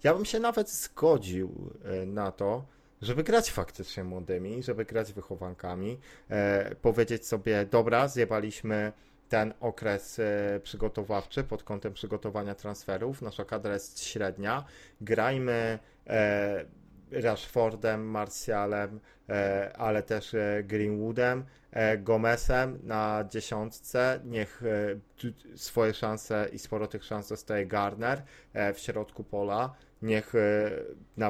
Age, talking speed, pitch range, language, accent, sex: 30-49, 100 wpm, 105-120 Hz, Polish, native, male